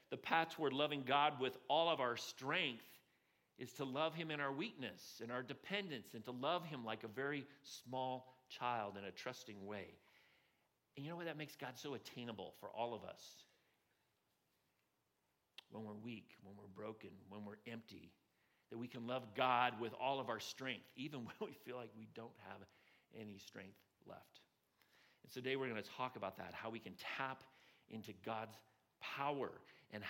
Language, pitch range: English, 110-140 Hz